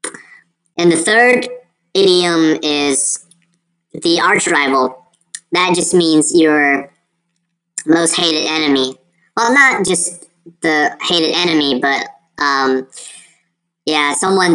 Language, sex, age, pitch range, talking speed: English, male, 20-39, 145-175 Hz, 100 wpm